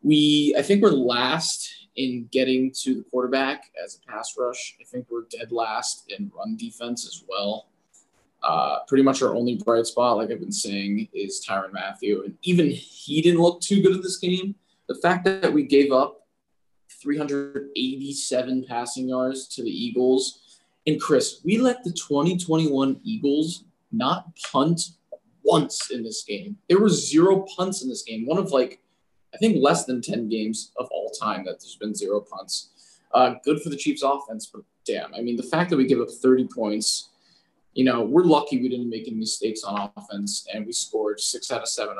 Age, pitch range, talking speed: 20-39, 125-195 Hz, 190 wpm